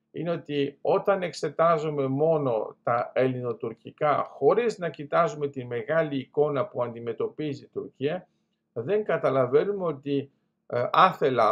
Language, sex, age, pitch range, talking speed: Greek, male, 50-69, 135-165 Hz, 115 wpm